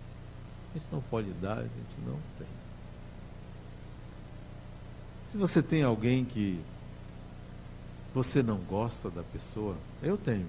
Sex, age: male, 60-79